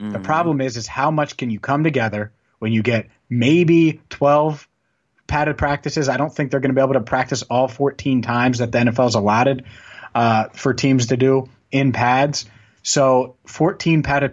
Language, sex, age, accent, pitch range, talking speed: English, male, 30-49, American, 120-140 Hz, 185 wpm